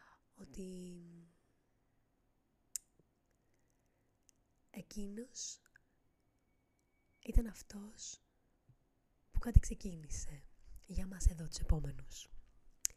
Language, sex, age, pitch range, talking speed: Greek, female, 20-39, 125-190 Hz, 55 wpm